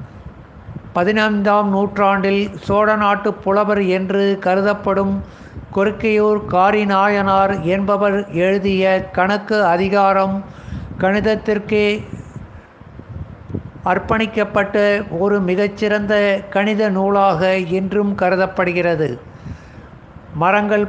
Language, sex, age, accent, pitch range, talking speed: Tamil, male, 60-79, native, 190-210 Hz, 65 wpm